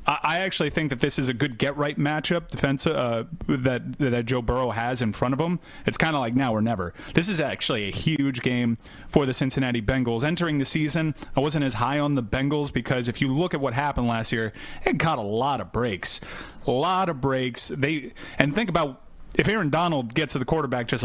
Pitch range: 125-150 Hz